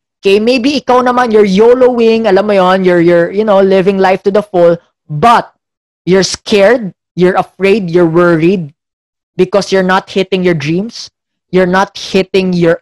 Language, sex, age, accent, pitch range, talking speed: English, female, 20-39, Filipino, 160-240 Hz, 165 wpm